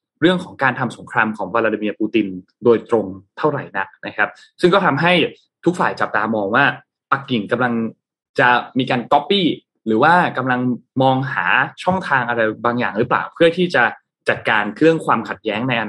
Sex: male